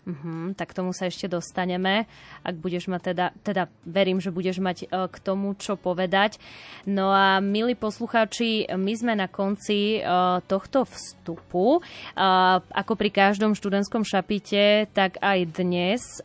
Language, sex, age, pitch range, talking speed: Slovak, female, 20-39, 185-215 Hz, 150 wpm